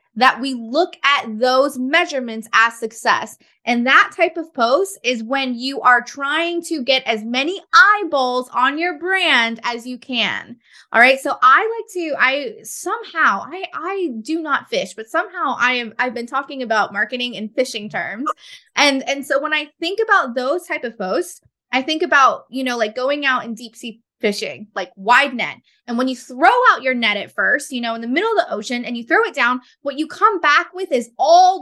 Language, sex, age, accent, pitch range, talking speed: English, female, 20-39, American, 235-325 Hz, 205 wpm